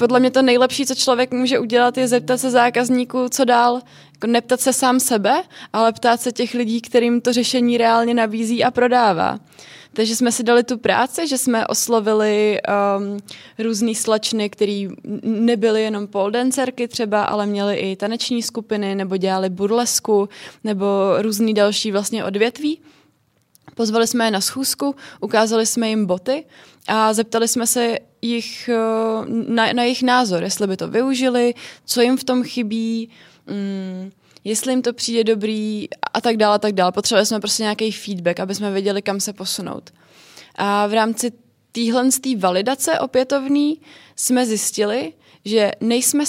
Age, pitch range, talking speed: 20-39, 210-245 Hz, 155 wpm